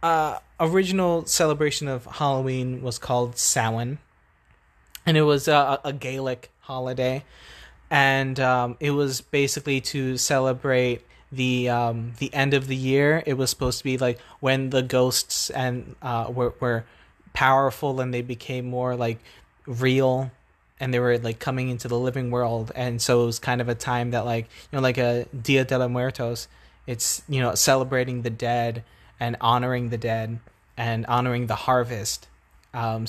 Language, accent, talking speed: English, American, 165 wpm